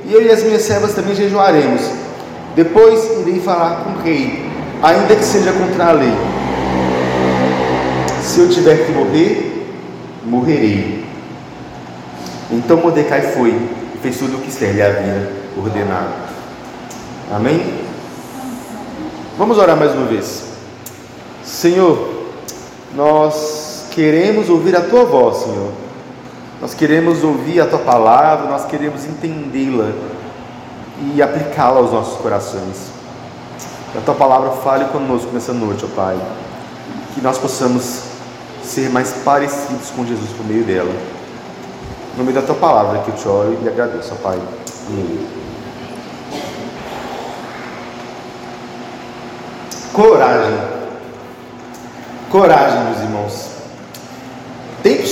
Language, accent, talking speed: Portuguese, Brazilian, 115 wpm